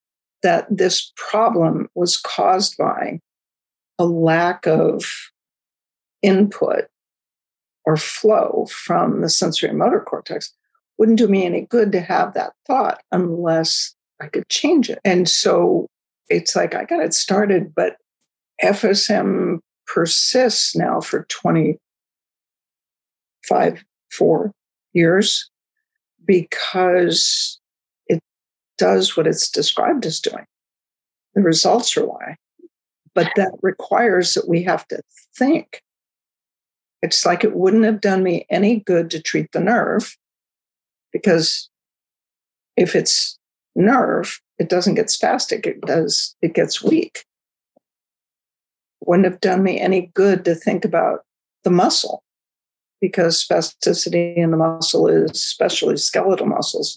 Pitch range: 170-215 Hz